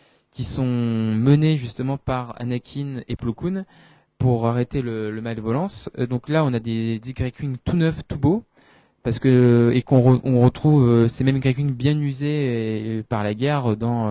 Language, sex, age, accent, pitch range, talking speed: French, male, 20-39, French, 115-135 Hz, 175 wpm